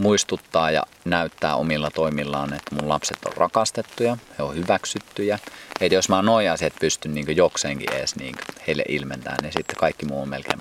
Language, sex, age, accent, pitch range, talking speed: Finnish, male, 30-49, native, 75-95 Hz, 180 wpm